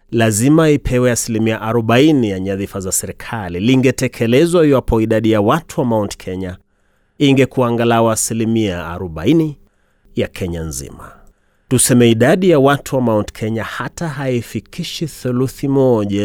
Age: 30-49